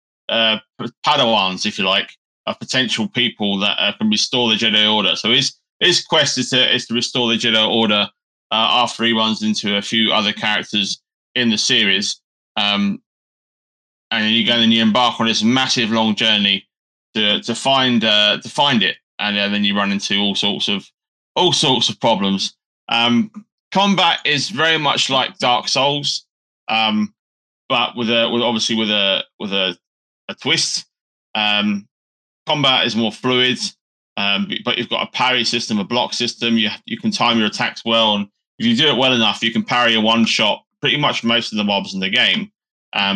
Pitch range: 105-125 Hz